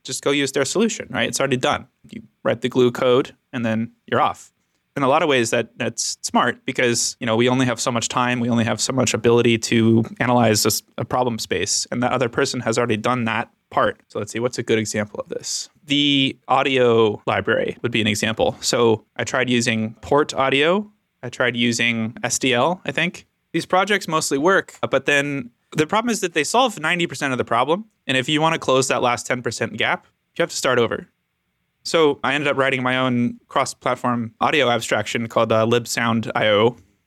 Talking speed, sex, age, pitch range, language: 205 wpm, male, 20-39, 115-140 Hz, English